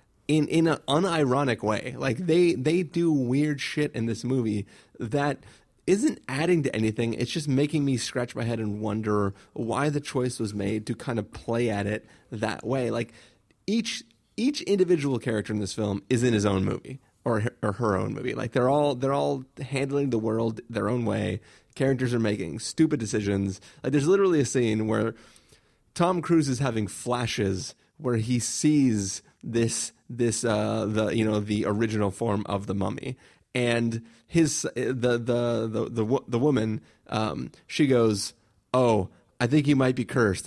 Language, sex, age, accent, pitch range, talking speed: English, male, 30-49, American, 110-145 Hz, 175 wpm